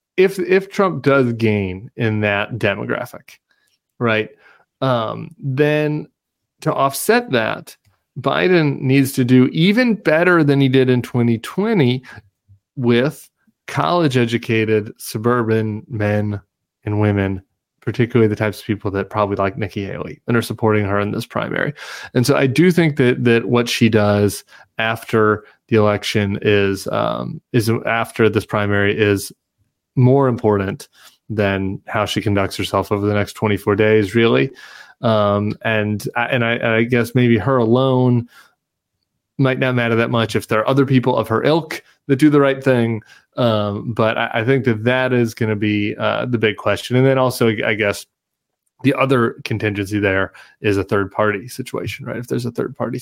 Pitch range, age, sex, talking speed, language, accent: 105-130 Hz, 30-49, male, 165 wpm, English, American